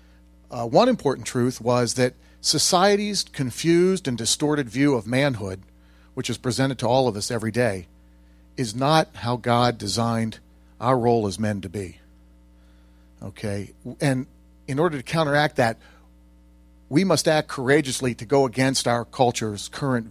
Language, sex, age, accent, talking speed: English, male, 40-59, American, 150 wpm